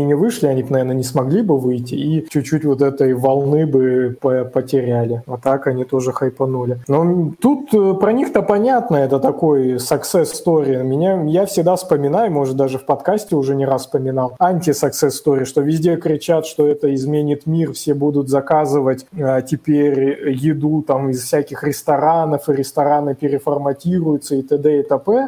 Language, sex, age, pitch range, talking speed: Russian, male, 20-39, 140-165 Hz, 155 wpm